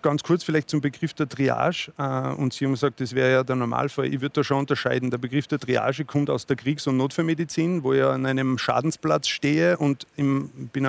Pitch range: 130-150 Hz